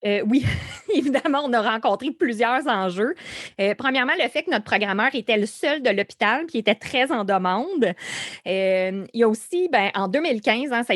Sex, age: female, 20-39